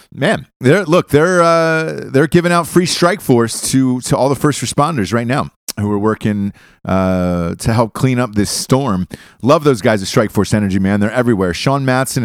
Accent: American